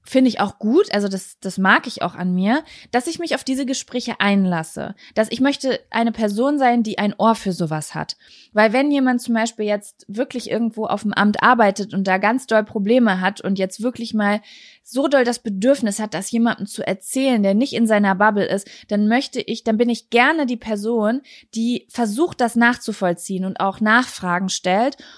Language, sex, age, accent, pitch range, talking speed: German, female, 20-39, German, 200-250 Hz, 205 wpm